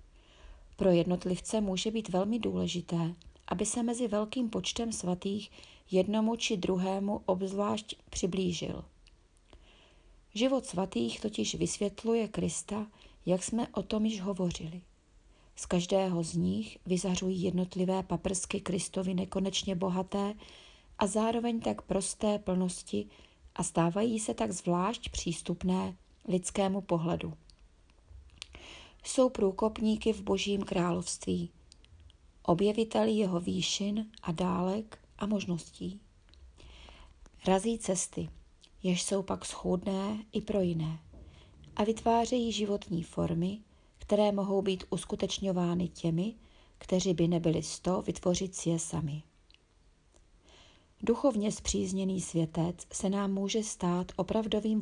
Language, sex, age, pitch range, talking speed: Czech, female, 30-49, 165-210 Hz, 105 wpm